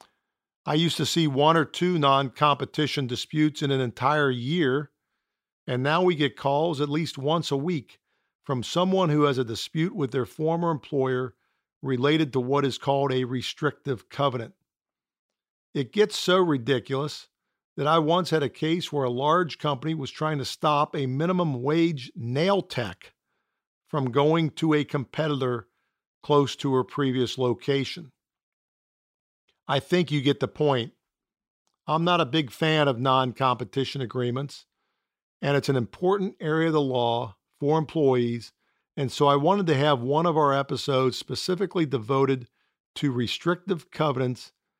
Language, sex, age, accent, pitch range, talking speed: English, male, 50-69, American, 130-160 Hz, 150 wpm